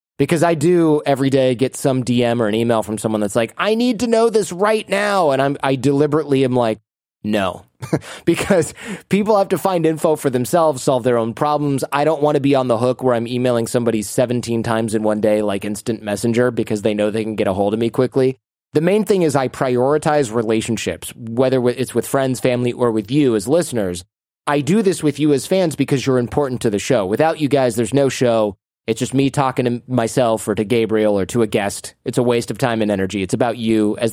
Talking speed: 230 wpm